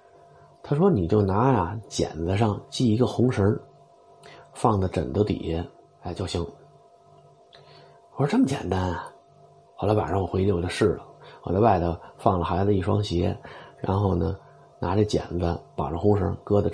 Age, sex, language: 30-49, male, Chinese